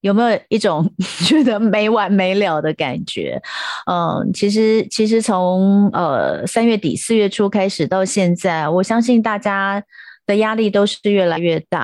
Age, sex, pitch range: 30-49, female, 180-230 Hz